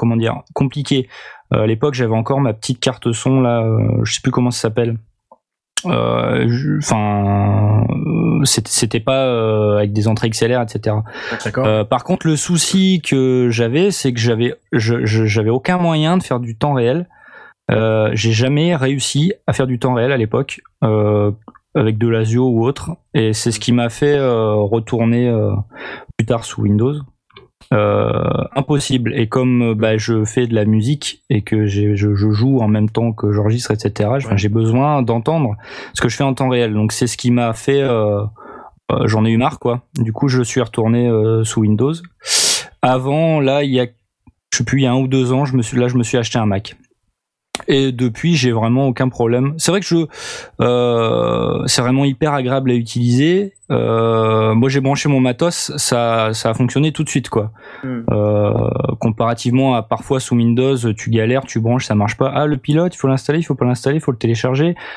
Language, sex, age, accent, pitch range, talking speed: French, male, 20-39, French, 115-135 Hz, 200 wpm